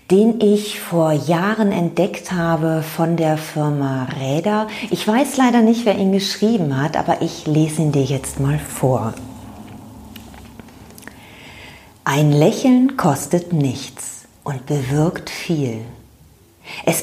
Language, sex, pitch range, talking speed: German, female, 130-195 Hz, 120 wpm